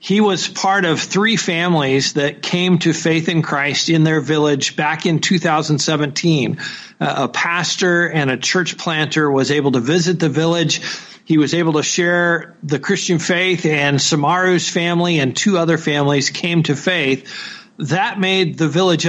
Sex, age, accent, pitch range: male, 50-69, American, 160-195 Hz